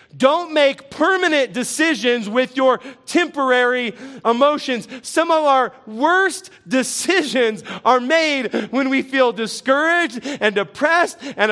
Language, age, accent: English, 30-49, American